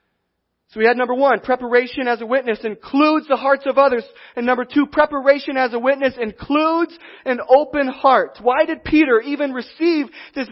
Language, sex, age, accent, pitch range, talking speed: English, male, 30-49, American, 195-270 Hz, 175 wpm